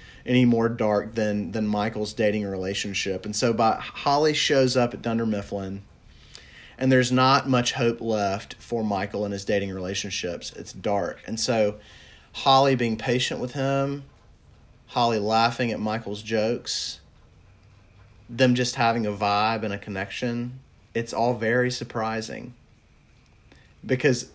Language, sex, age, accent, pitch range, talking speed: English, male, 30-49, American, 105-130 Hz, 140 wpm